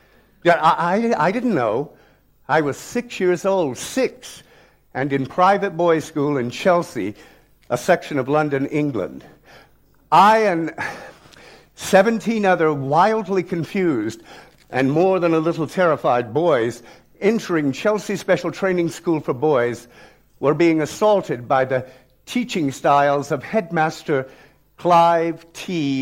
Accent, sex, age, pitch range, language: American, male, 60-79, 140-185 Hz, Chinese